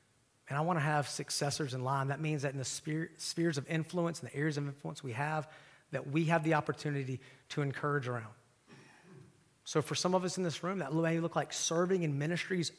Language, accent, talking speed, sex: English, American, 225 wpm, male